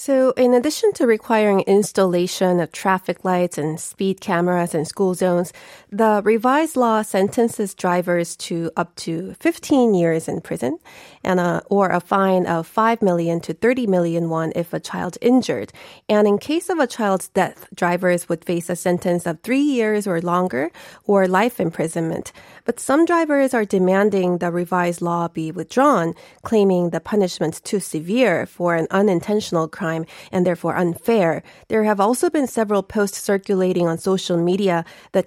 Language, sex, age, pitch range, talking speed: English, female, 30-49, 175-215 Hz, 165 wpm